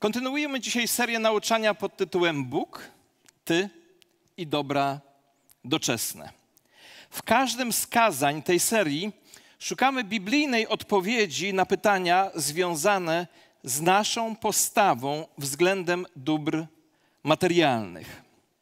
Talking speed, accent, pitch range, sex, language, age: 95 wpm, native, 185-245 Hz, male, Polish, 40-59